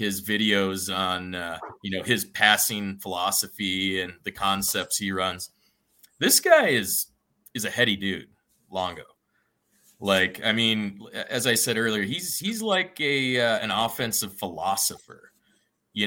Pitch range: 95-115 Hz